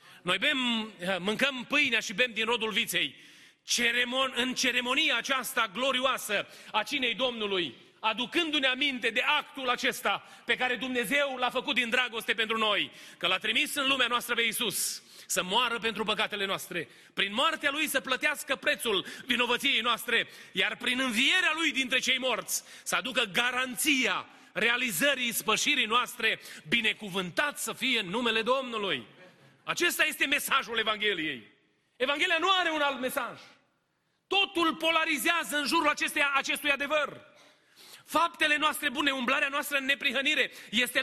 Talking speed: 135 wpm